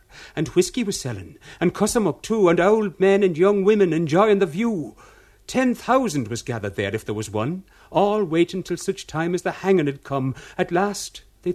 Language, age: English, 60-79